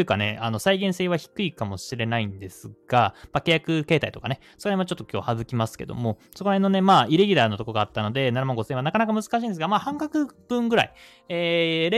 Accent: native